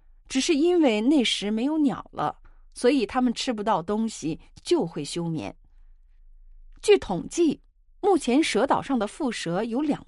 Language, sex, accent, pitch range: Chinese, female, native, 175-280 Hz